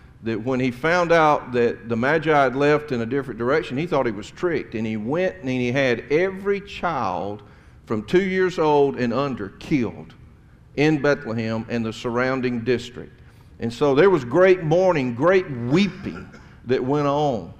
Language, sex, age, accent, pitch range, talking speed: English, male, 50-69, American, 110-145 Hz, 175 wpm